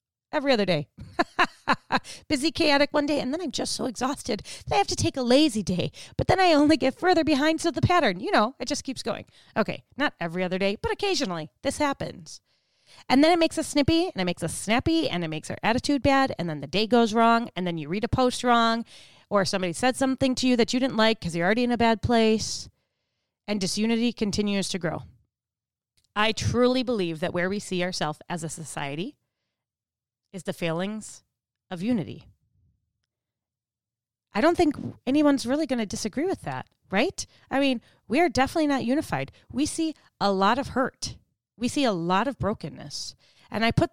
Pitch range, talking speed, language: 180-270 Hz, 200 wpm, English